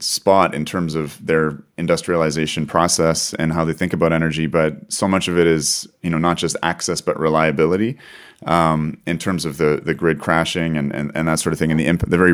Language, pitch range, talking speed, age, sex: English, 75-85 Hz, 225 wpm, 30-49, male